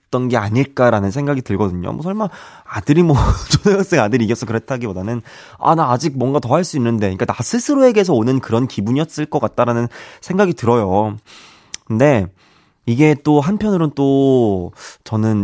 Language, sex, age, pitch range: Korean, male, 20-39, 105-150 Hz